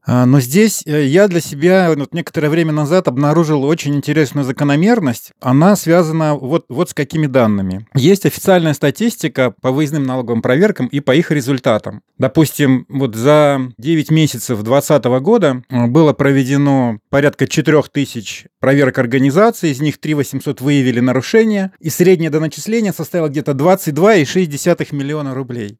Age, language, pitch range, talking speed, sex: 30-49, Russian, 135-170 Hz, 130 wpm, male